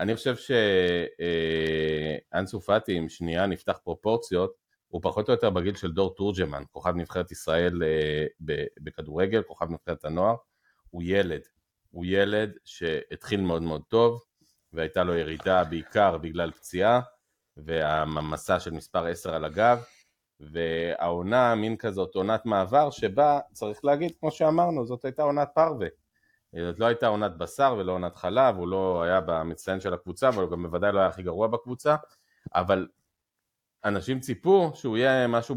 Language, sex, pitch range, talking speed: Hebrew, male, 85-120 Hz, 150 wpm